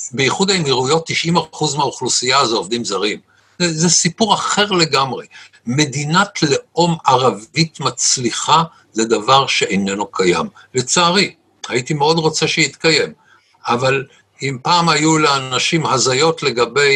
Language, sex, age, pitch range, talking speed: Hebrew, male, 60-79, 130-185 Hz, 115 wpm